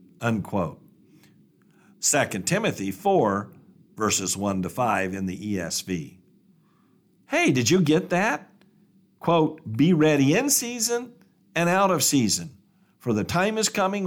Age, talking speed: 50-69, 130 wpm